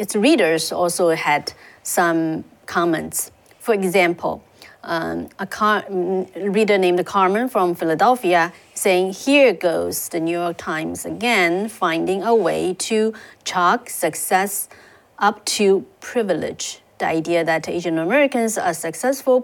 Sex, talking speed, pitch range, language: female, 120 wpm, 170-210 Hz, English